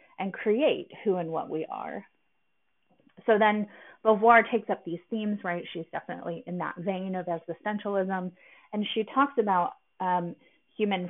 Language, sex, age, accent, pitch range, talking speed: English, female, 30-49, American, 175-225 Hz, 150 wpm